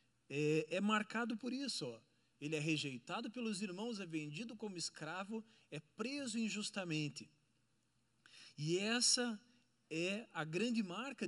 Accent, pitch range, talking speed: Brazilian, 150-220 Hz, 130 wpm